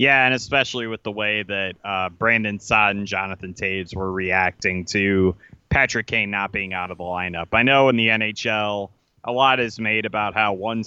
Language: English